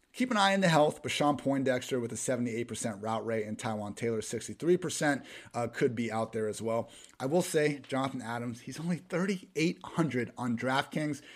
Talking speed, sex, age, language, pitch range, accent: 185 wpm, male, 30-49, English, 115-145 Hz, American